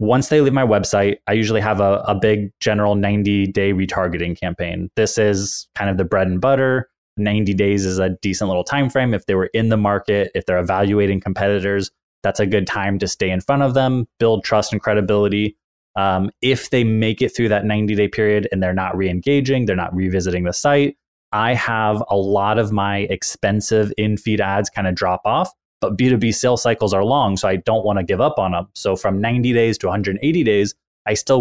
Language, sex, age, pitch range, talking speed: French, male, 20-39, 100-115 Hz, 210 wpm